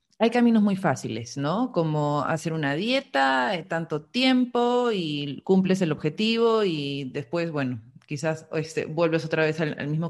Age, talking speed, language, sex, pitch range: 30-49, 155 wpm, Spanish, female, 150-190 Hz